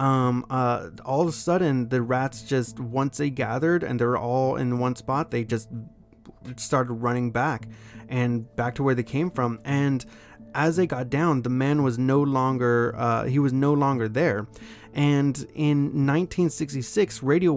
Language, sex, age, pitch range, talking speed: English, male, 20-39, 120-145 Hz, 170 wpm